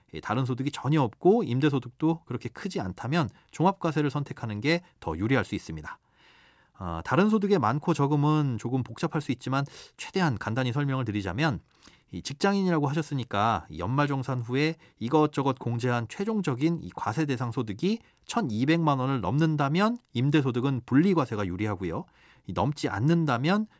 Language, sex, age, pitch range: Korean, male, 30-49, 115-165 Hz